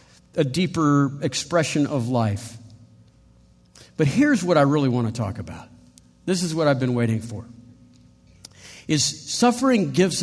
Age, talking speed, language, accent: 50-69, 140 wpm, English, American